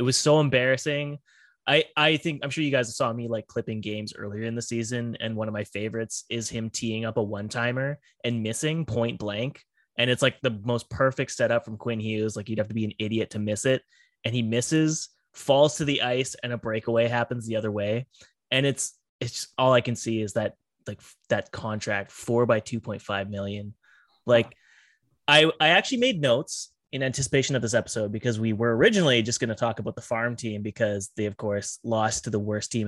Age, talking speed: 20-39, 215 wpm